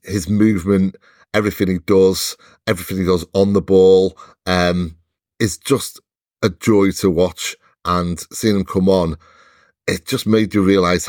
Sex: male